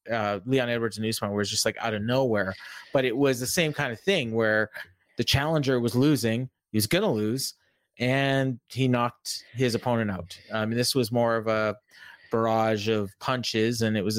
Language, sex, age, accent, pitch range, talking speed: English, male, 30-49, American, 110-140 Hz, 200 wpm